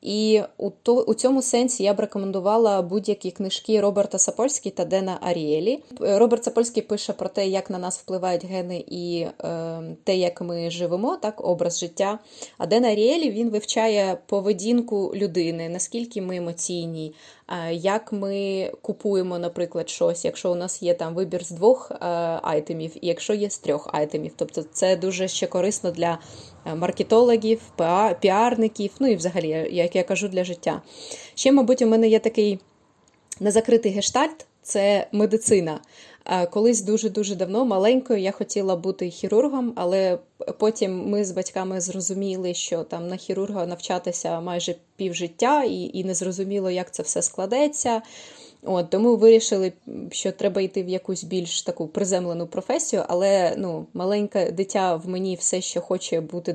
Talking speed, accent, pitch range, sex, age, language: 155 wpm, native, 180-215 Hz, female, 20-39, Ukrainian